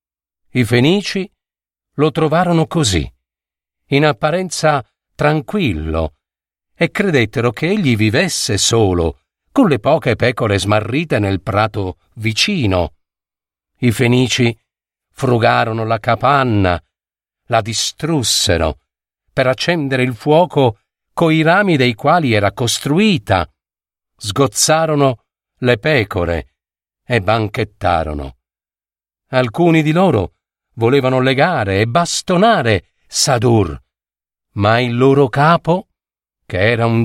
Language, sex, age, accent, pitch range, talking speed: Italian, male, 50-69, native, 100-145 Hz, 95 wpm